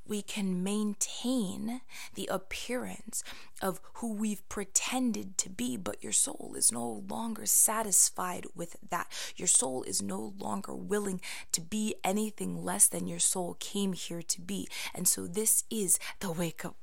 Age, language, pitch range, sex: 20-39, English, 185-210 Hz, female